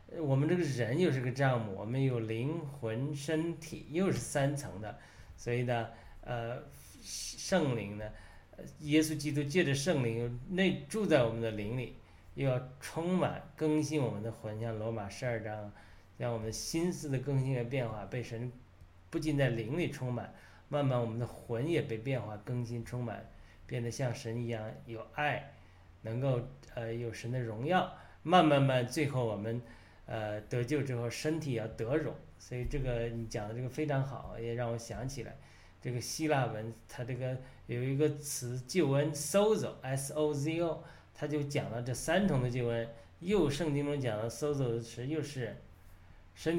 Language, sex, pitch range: Chinese, male, 115-150 Hz